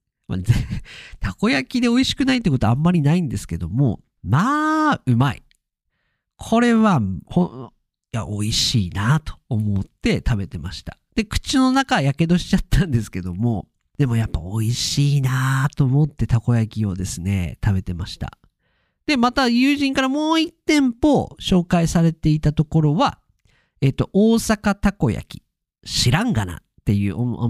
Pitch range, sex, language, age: 105-175 Hz, male, Japanese, 50-69